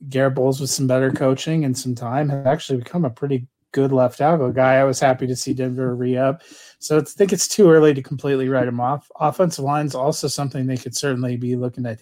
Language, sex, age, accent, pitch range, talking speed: English, male, 30-49, American, 130-150 Hz, 235 wpm